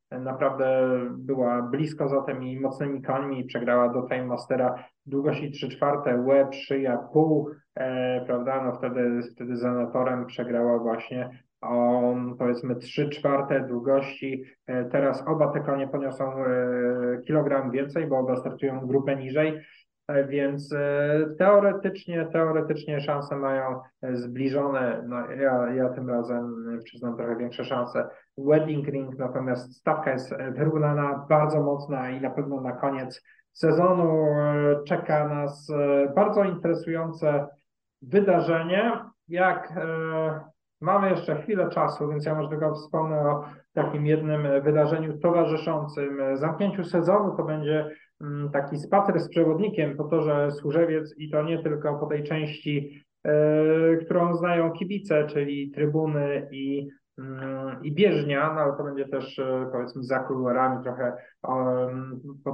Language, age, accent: Polish, 20-39, native